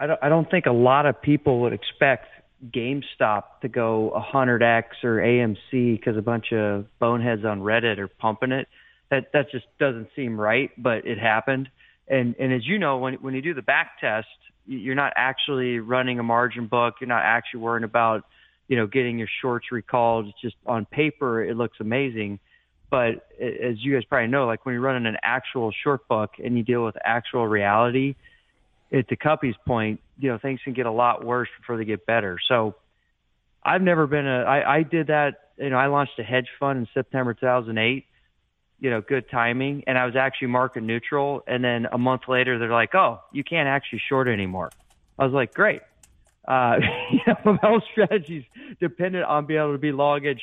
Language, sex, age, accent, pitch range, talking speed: English, male, 30-49, American, 115-140 Hz, 200 wpm